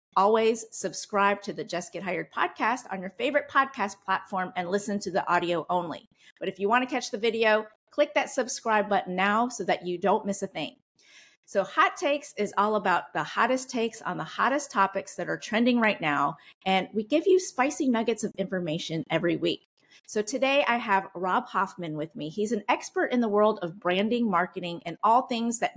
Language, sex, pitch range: English, female, 185-245 Hz